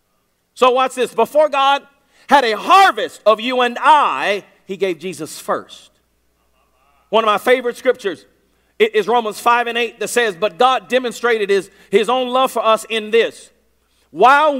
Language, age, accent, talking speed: English, 50-69, American, 165 wpm